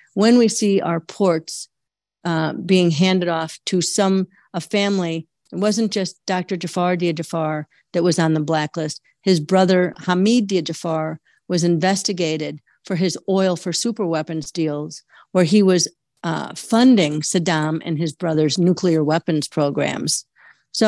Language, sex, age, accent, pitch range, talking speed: English, female, 50-69, American, 165-195 Hz, 150 wpm